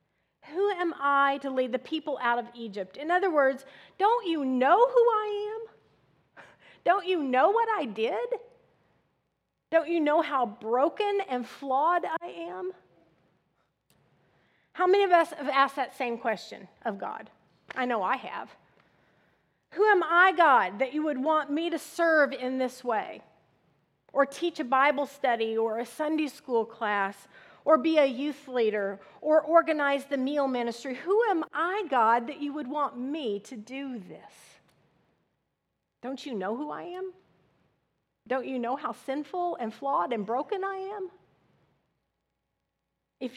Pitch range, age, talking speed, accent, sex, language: 240-335 Hz, 40-59, 155 wpm, American, female, English